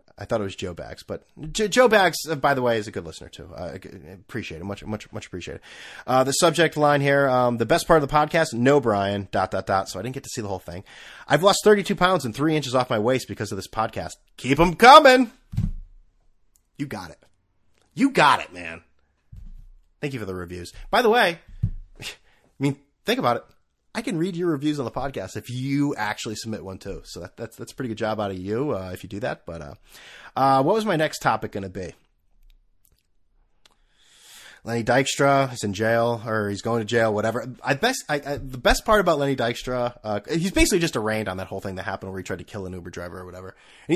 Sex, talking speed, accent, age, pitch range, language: male, 235 wpm, American, 30-49, 95-145 Hz, English